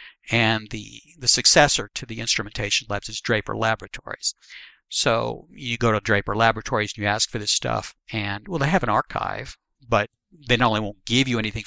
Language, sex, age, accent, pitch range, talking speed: English, male, 60-79, American, 110-130 Hz, 190 wpm